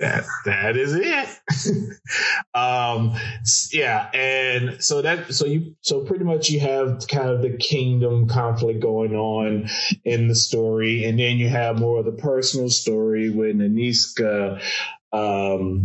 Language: English